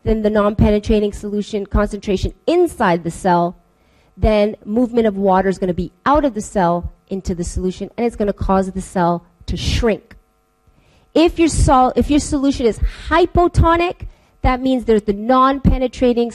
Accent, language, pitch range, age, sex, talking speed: American, English, 195-250 Hz, 30-49, female, 165 wpm